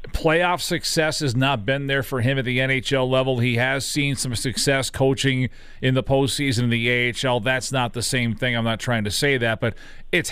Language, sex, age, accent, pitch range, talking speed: English, male, 40-59, American, 130-170 Hz, 215 wpm